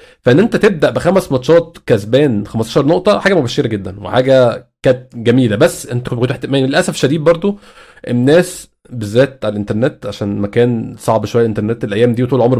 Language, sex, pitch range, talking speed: Arabic, male, 125-165 Hz, 160 wpm